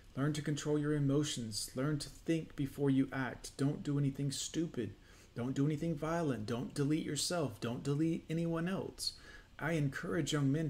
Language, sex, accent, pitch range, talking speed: English, male, American, 125-150 Hz, 170 wpm